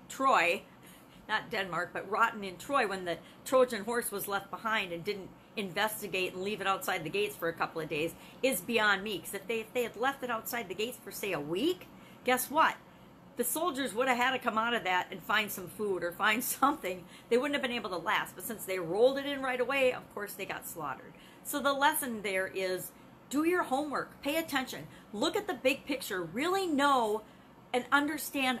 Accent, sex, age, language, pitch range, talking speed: American, female, 40-59, English, 200-270 Hz, 220 wpm